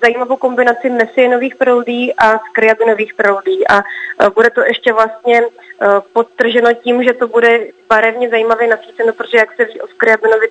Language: Czech